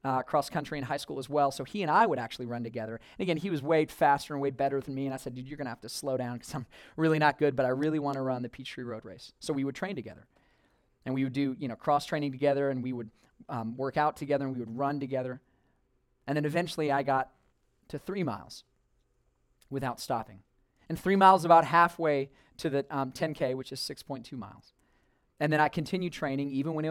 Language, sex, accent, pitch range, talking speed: English, male, American, 130-155 Hz, 245 wpm